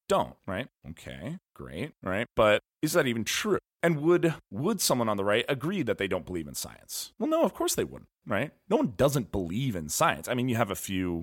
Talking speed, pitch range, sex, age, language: 230 wpm, 85-125 Hz, male, 30-49, English